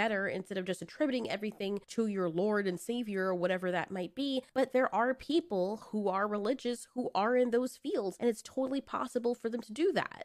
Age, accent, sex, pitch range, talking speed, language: 20-39, American, female, 190-255 Hz, 215 wpm, English